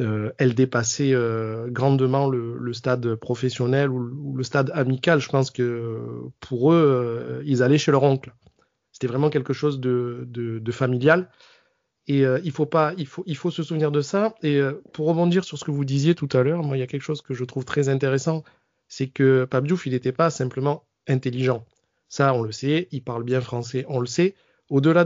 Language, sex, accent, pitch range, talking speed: French, male, French, 130-160 Hz, 215 wpm